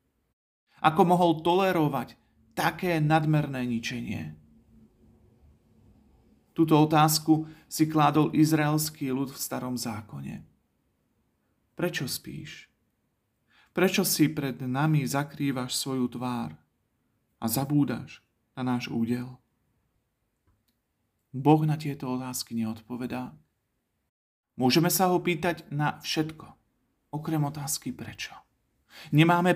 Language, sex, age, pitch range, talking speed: Slovak, male, 40-59, 120-170 Hz, 90 wpm